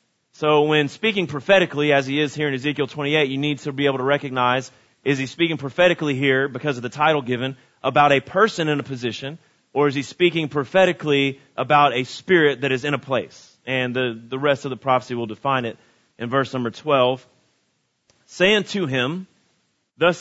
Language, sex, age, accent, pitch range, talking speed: English, male, 30-49, American, 125-150 Hz, 195 wpm